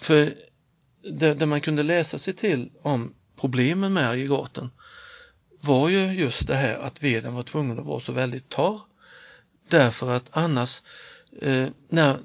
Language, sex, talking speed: Swedish, male, 145 wpm